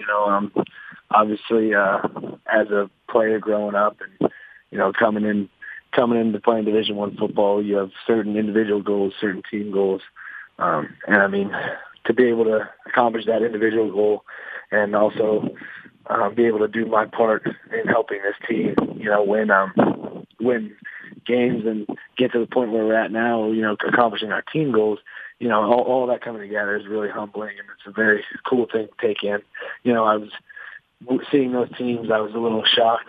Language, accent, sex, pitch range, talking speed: English, American, male, 105-115 Hz, 190 wpm